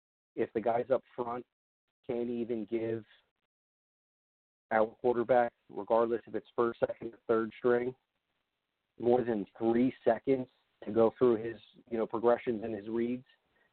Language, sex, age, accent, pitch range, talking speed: English, male, 40-59, American, 110-125 Hz, 140 wpm